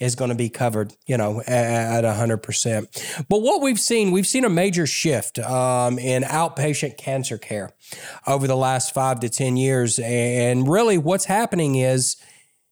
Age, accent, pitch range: 40-59, American, 130-190 Hz